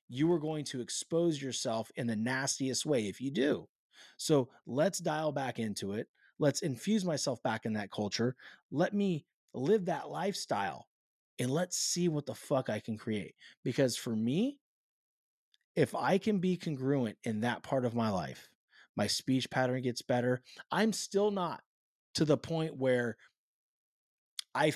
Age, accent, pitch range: 30-49, American, 125-170 Hz